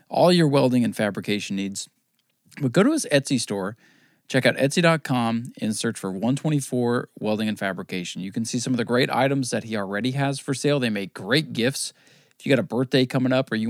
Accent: American